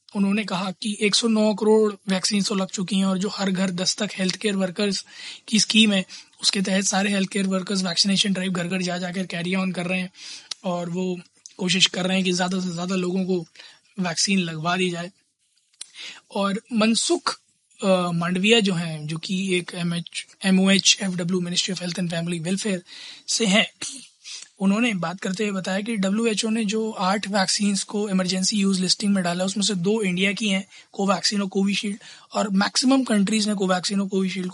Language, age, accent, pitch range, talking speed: Hindi, 20-39, native, 185-210 Hz, 185 wpm